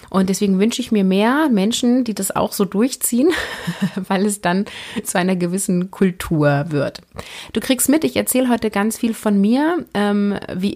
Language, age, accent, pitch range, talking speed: German, 30-49, German, 170-210 Hz, 175 wpm